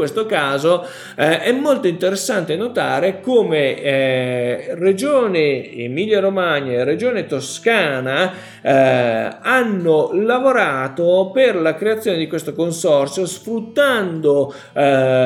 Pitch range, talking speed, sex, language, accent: 140-220 Hz, 110 wpm, male, Italian, native